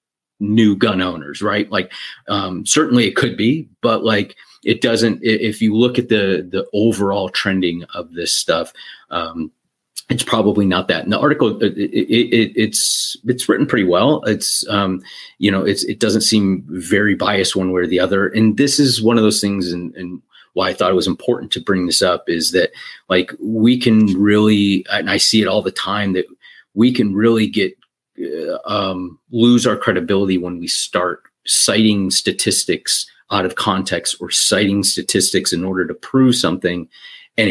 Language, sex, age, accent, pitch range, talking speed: English, male, 30-49, American, 95-115 Hz, 175 wpm